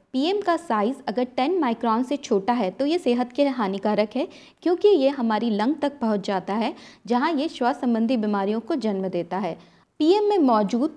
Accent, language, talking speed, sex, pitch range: native, Hindi, 190 wpm, female, 210-285 Hz